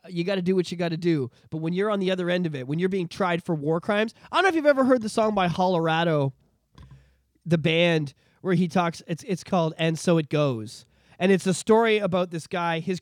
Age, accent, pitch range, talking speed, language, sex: 30-49, American, 140-175 Hz, 260 wpm, English, male